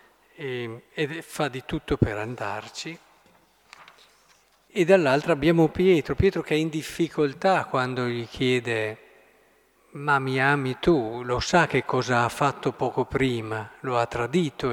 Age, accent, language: 50-69, native, Italian